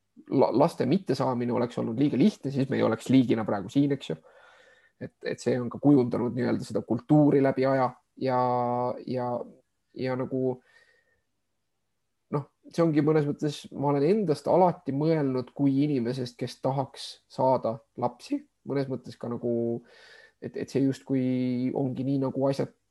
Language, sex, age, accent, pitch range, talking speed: English, male, 20-39, Finnish, 120-140 Hz, 155 wpm